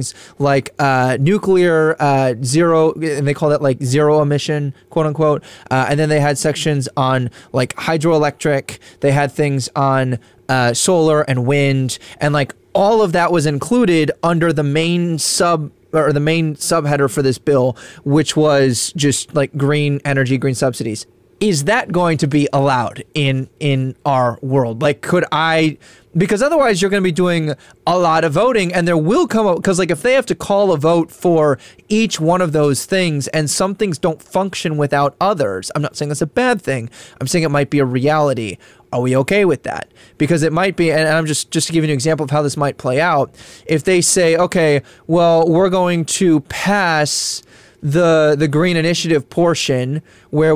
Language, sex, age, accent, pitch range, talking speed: English, male, 20-39, American, 140-170 Hz, 190 wpm